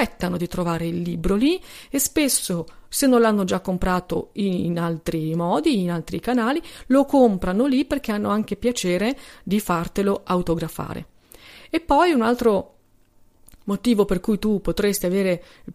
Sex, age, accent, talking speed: female, 40-59, native, 150 wpm